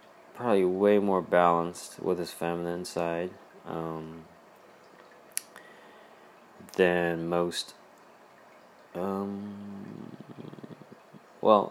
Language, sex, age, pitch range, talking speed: English, male, 30-49, 85-100 Hz, 65 wpm